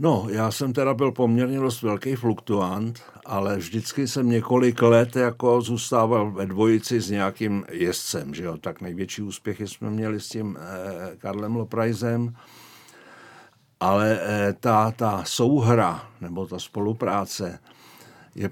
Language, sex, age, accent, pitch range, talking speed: Czech, male, 60-79, native, 105-125 Hz, 130 wpm